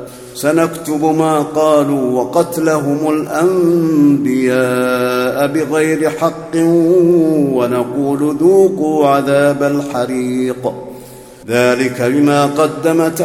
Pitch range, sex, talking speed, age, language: 130-155 Hz, male, 65 wpm, 50-69, Arabic